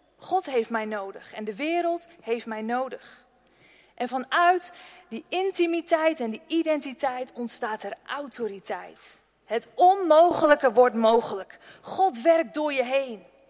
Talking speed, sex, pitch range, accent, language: 130 wpm, female, 235-320 Hz, Dutch, Dutch